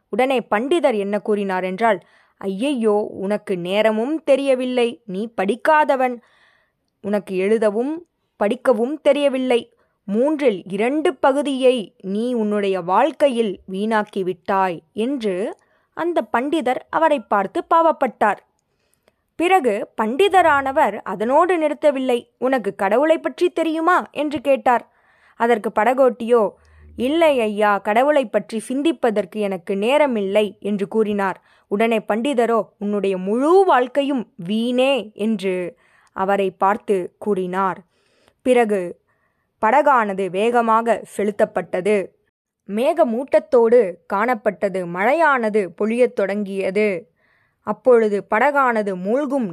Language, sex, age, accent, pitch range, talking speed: Tamil, female, 20-39, native, 205-275 Hz, 85 wpm